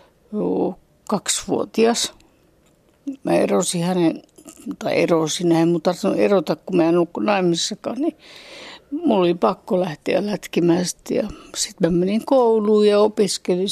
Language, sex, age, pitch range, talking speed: Finnish, female, 60-79, 170-215 Hz, 105 wpm